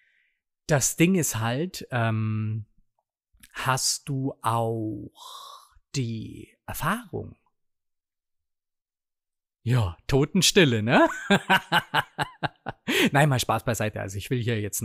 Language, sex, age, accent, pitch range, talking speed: German, male, 30-49, German, 105-135 Hz, 90 wpm